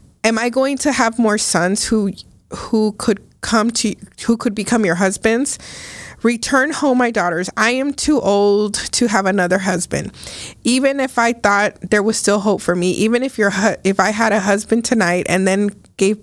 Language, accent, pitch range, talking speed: English, American, 190-230 Hz, 190 wpm